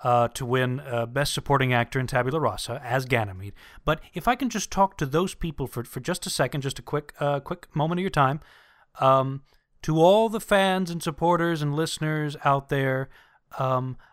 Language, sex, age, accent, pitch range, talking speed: English, male, 30-49, American, 125-165 Hz, 200 wpm